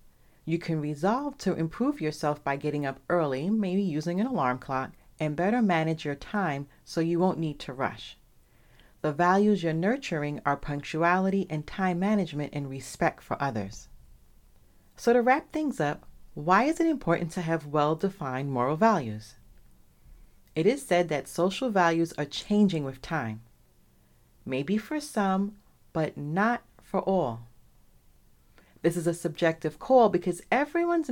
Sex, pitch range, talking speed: female, 140-205 Hz, 150 wpm